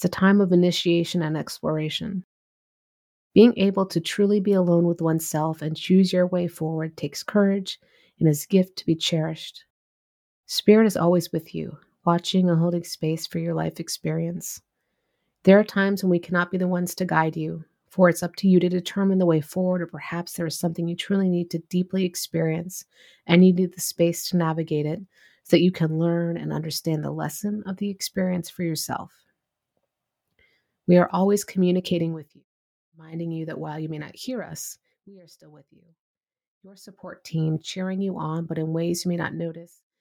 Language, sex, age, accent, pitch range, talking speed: English, female, 30-49, American, 160-180 Hz, 195 wpm